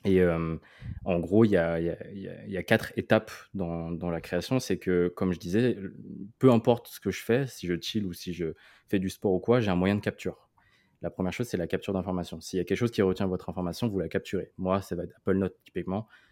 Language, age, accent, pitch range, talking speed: French, 20-39, French, 85-105 Hz, 255 wpm